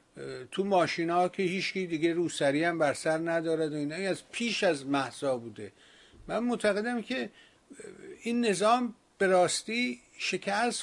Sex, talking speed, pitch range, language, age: male, 125 wpm, 155-190 Hz, Persian, 60-79